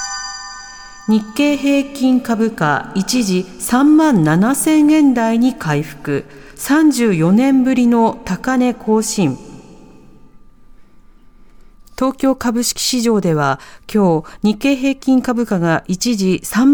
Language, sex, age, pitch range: Japanese, female, 50-69, 180-265 Hz